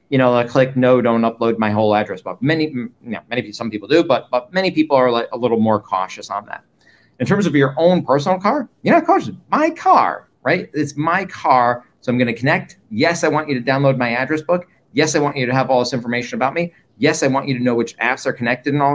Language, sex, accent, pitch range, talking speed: English, male, American, 115-150 Hz, 255 wpm